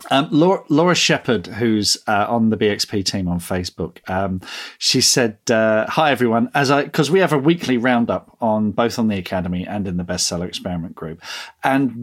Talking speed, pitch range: 185 wpm, 100-140 Hz